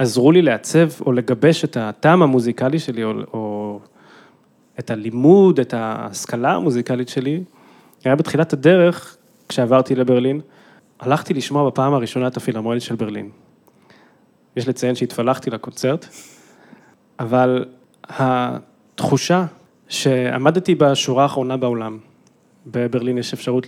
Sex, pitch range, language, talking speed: male, 120-145 Hz, Hebrew, 110 wpm